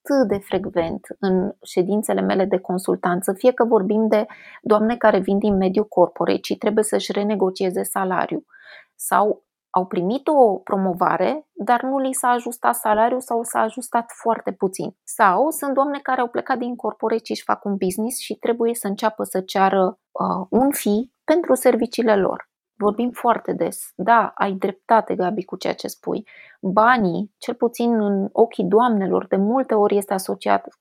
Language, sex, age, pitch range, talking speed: Romanian, female, 20-39, 195-250 Hz, 165 wpm